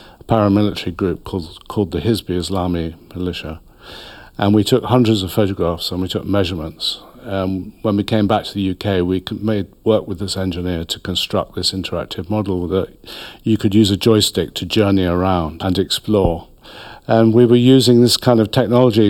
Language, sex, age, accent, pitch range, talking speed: English, male, 50-69, British, 95-110 Hz, 175 wpm